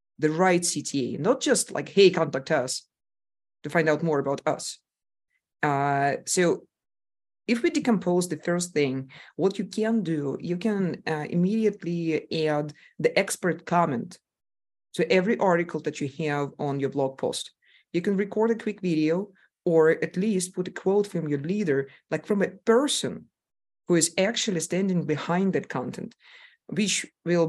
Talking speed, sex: 160 wpm, female